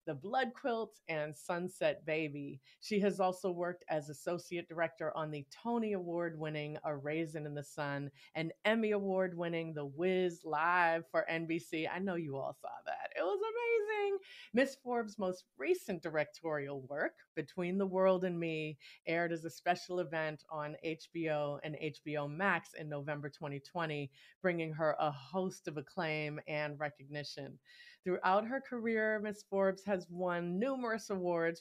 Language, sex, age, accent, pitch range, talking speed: English, female, 30-49, American, 155-195 Hz, 150 wpm